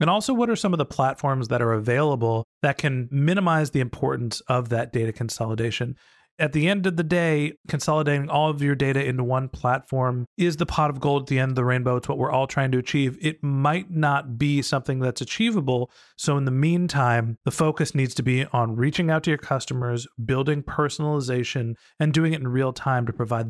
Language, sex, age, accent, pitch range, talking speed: English, male, 30-49, American, 130-170 Hz, 215 wpm